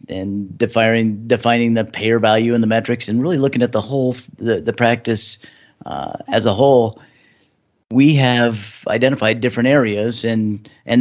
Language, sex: English, male